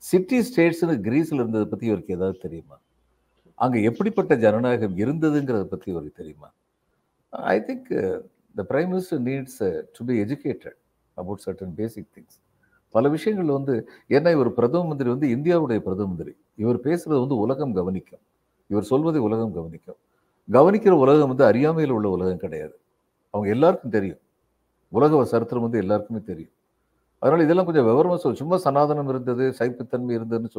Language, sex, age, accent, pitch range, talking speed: Tamil, male, 50-69, native, 110-155 Hz, 140 wpm